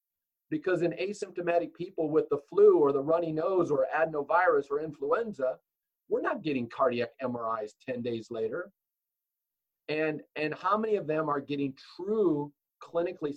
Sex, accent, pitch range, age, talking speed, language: male, American, 140-195 Hz, 40-59, 150 wpm, English